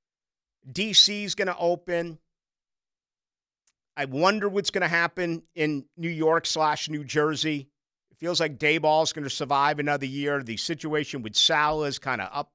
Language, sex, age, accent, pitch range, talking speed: English, male, 50-69, American, 130-165 Hz, 165 wpm